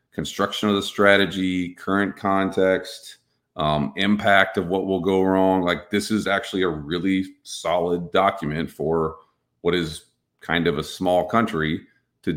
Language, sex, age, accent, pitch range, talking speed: English, male, 40-59, American, 80-100 Hz, 145 wpm